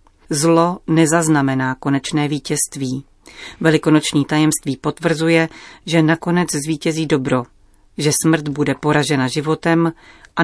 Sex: female